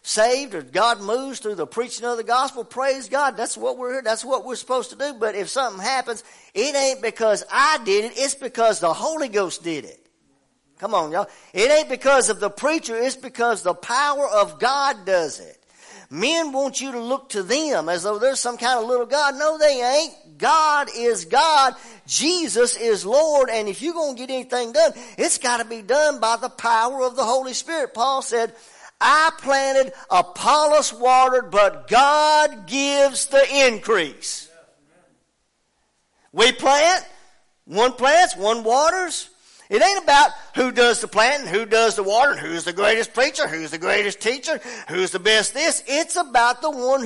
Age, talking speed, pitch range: 50-69, 185 wpm, 225-295 Hz